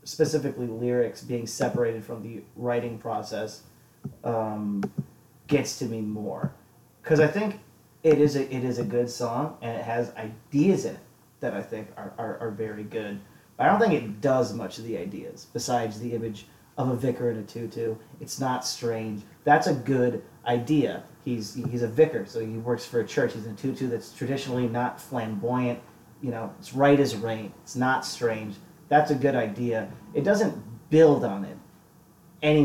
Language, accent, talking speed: English, American, 180 wpm